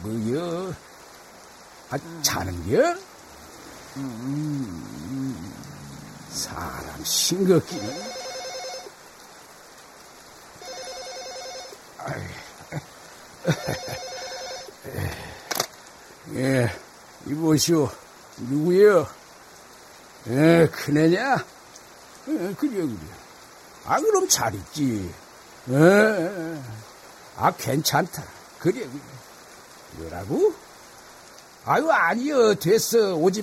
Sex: male